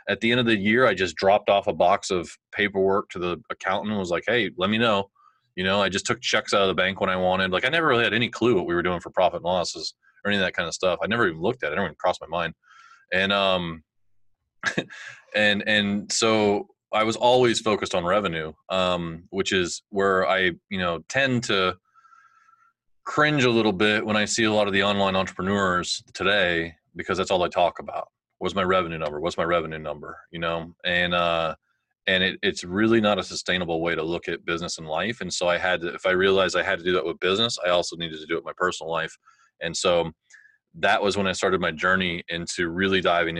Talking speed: 240 wpm